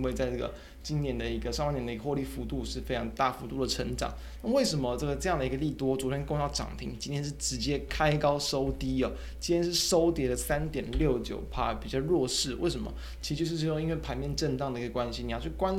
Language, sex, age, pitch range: Chinese, male, 20-39, 125-150 Hz